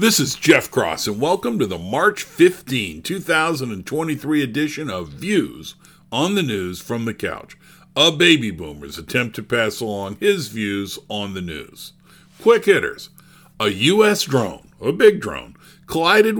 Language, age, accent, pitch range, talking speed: English, 50-69, American, 120-175 Hz, 150 wpm